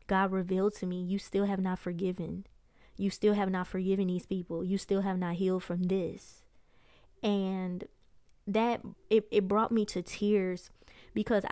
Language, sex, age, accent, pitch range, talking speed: English, female, 20-39, American, 185-210 Hz, 165 wpm